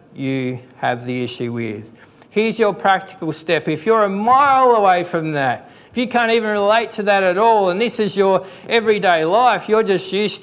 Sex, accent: male, Australian